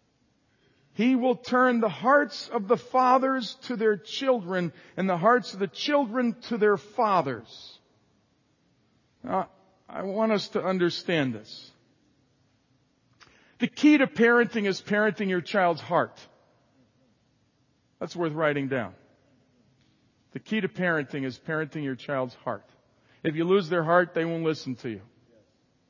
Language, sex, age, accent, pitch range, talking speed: English, male, 50-69, American, 135-205 Hz, 135 wpm